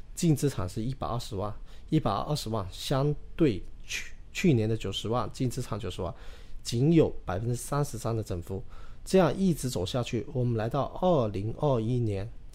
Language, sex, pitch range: Chinese, male, 110-150 Hz